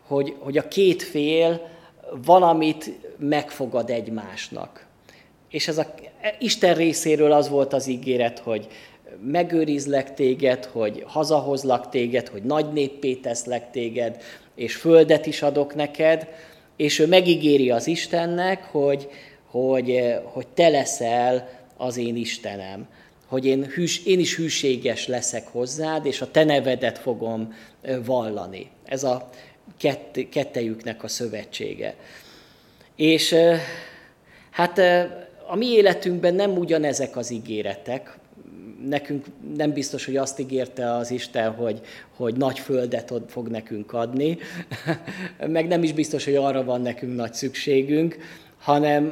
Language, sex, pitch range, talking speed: Hungarian, male, 125-160 Hz, 120 wpm